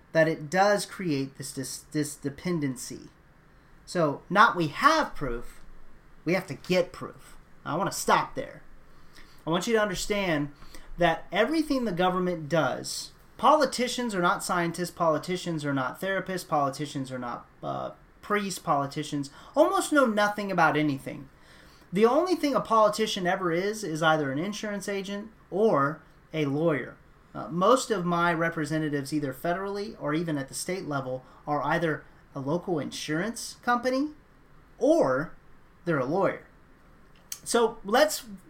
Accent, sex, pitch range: American, male, 145-195 Hz